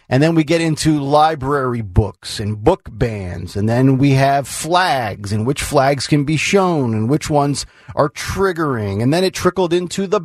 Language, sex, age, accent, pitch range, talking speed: English, male, 40-59, American, 130-170 Hz, 185 wpm